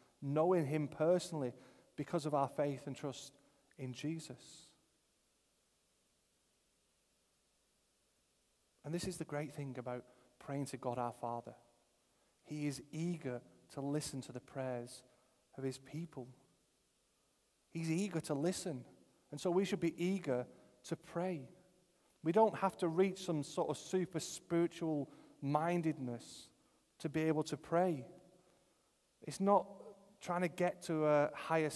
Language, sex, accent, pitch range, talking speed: English, male, British, 135-170 Hz, 130 wpm